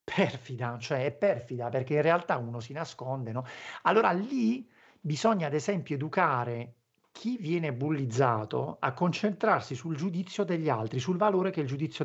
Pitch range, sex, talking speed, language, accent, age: 130-180 Hz, male, 155 wpm, Italian, native, 50-69